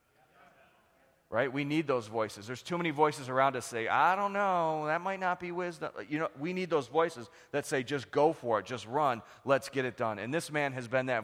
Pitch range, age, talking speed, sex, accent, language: 120-145 Hz, 30-49, 240 wpm, male, American, English